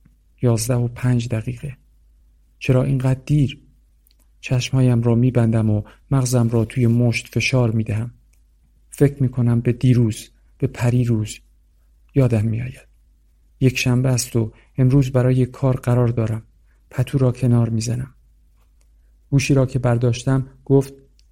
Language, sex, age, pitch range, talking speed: Persian, male, 50-69, 115-130 Hz, 130 wpm